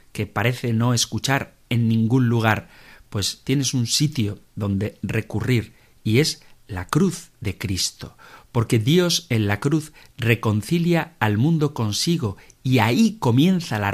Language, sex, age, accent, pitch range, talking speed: Spanish, male, 40-59, Spanish, 110-155 Hz, 140 wpm